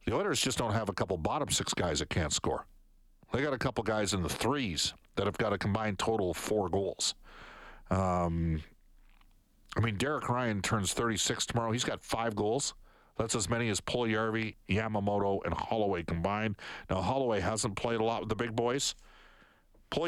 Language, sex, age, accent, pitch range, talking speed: English, male, 50-69, American, 105-130 Hz, 190 wpm